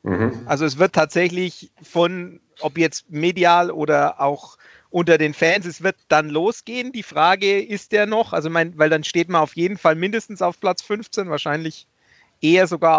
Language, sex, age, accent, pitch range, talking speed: German, male, 40-59, German, 150-185 Hz, 175 wpm